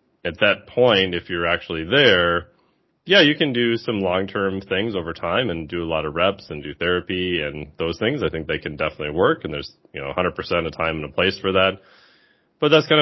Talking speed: 225 wpm